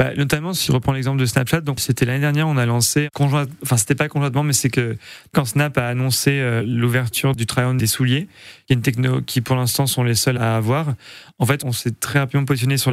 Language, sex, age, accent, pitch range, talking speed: French, male, 30-49, French, 120-140 Hz, 245 wpm